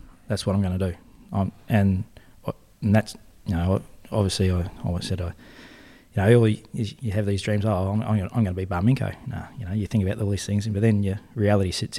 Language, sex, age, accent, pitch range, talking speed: English, male, 20-39, Australian, 100-115 Hz, 220 wpm